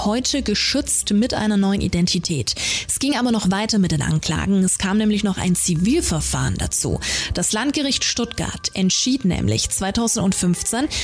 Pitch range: 180-235 Hz